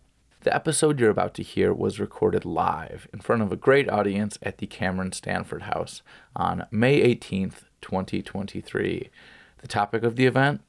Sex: male